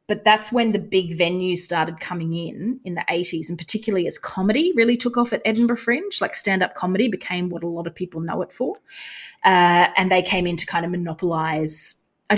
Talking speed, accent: 215 wpm, Australian